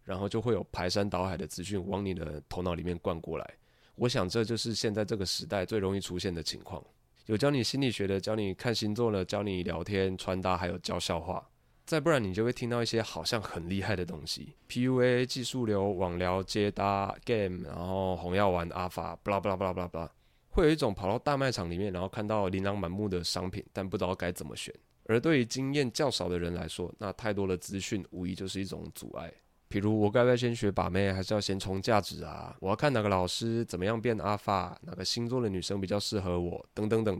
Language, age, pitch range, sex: Chinese, 20-39, 90-115 Hz, male